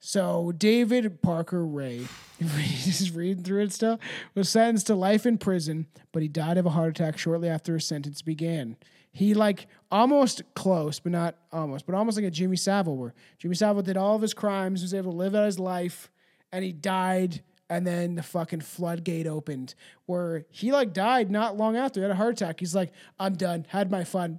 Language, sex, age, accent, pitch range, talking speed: English, male, 30-49, American, 160-200 Hz, 205 wpm